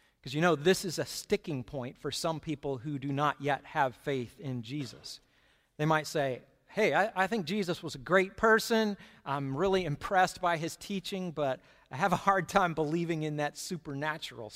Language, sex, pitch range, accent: English, male, 140-185 Hz, American